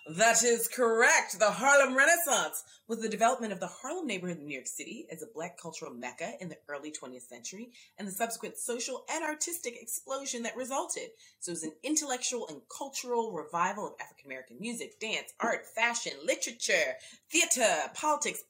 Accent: American